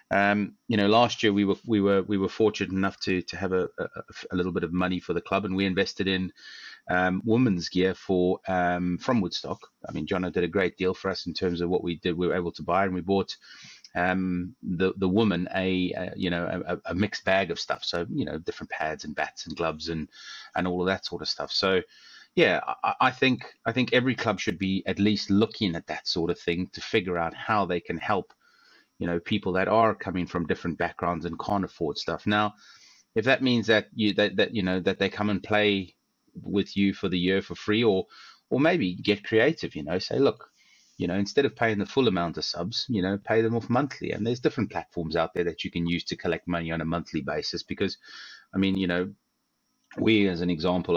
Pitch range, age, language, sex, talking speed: 90-105 Hz, 30-49, English, male, 240 wpm